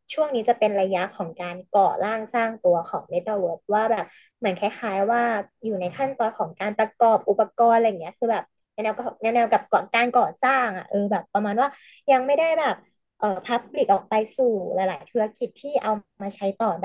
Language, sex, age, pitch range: Thai, female, 20-39, 190-235 Hz